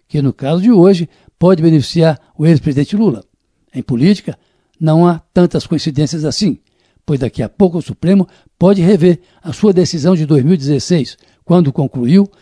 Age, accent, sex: 60-79, Brazilian, male